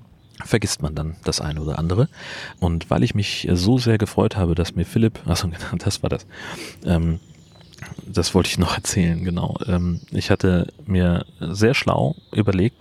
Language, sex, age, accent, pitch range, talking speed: German, male, 40-59, German, 85-105 Hz, 175 wpm